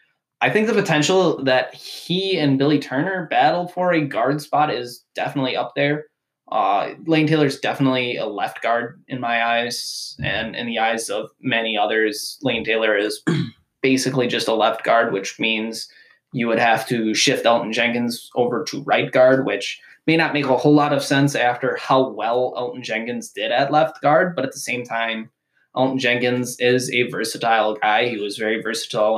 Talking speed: 185 wpm